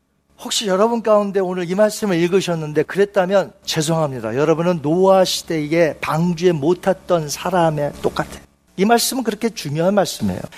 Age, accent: 40-59, native